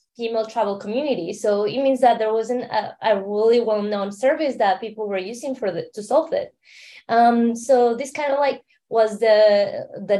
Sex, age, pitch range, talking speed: female, 20-39, 195-245 Hz, 195 wpm